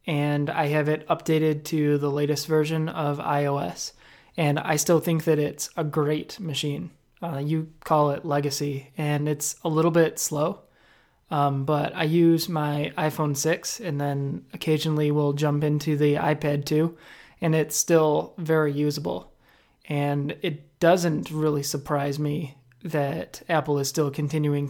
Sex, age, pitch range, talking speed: male, 20-39, 145-160 Hz, 155 wpm